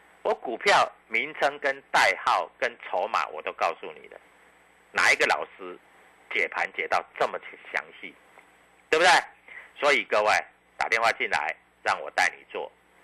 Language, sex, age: Chinese, male, 50-69